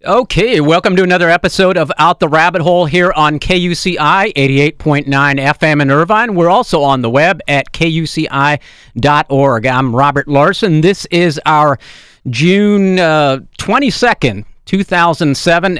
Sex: male